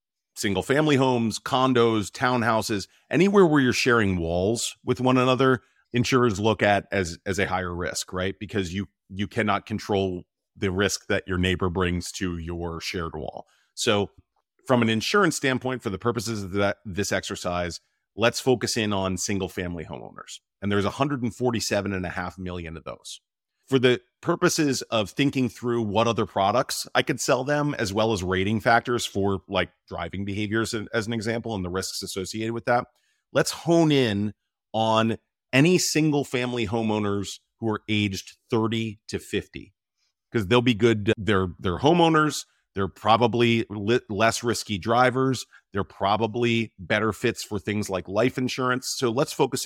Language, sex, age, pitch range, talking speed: English, male, 40-59, 95-125 Hz, 160 wpm